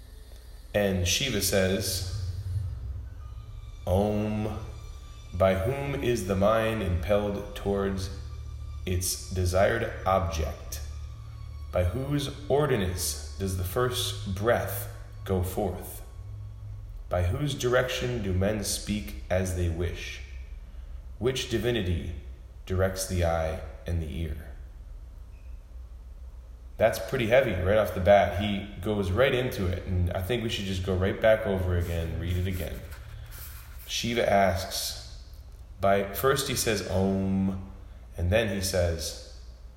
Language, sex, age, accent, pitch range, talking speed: English, male, 30-49, American, 85-100 Hz, 115 wpm